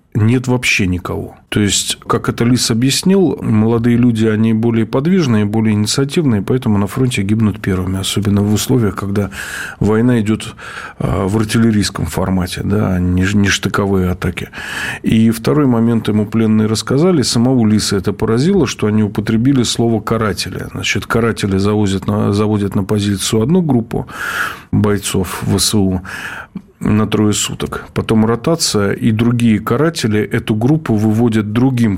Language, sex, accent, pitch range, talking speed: Russian, male, native, 95-115 Hz, 130 wpm